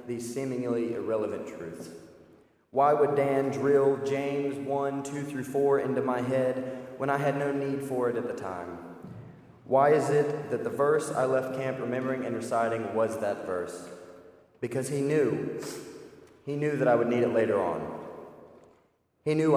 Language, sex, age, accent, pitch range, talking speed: English, male, 30-49, American, 115-140 Hz, 170 wpm